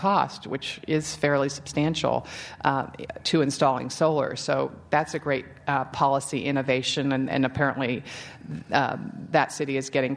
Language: English